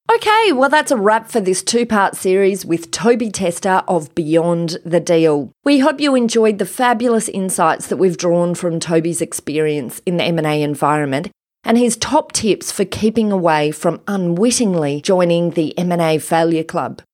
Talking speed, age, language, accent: 165 wpm, 30-49, English, Australian